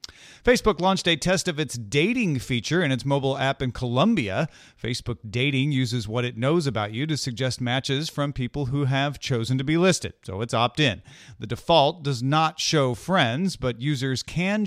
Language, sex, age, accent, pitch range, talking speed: English, male, 40-59, American, 115-150 Hz, 185 wpm